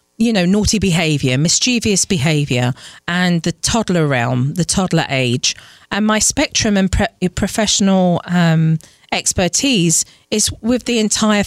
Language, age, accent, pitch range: English, 40-59, British, 165-220 Hz